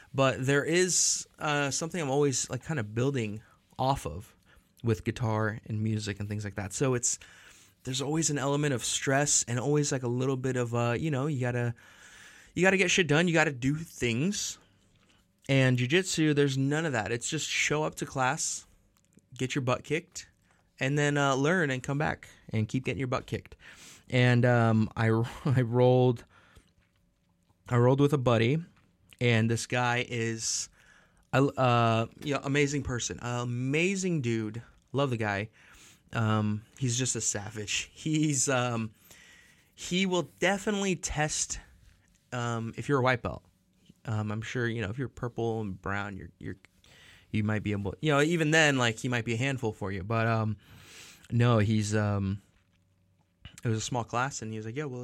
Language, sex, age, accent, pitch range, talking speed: English, male, 20-39, American, 105-140 Hz, 185 wpm